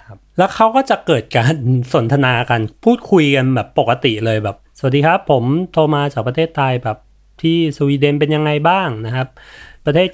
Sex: male